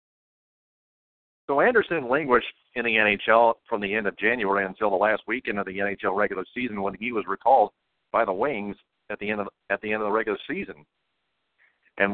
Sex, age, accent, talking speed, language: male, 50-69, American, 195 wpm, English